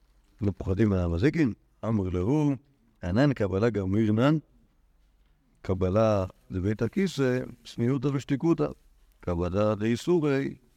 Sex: male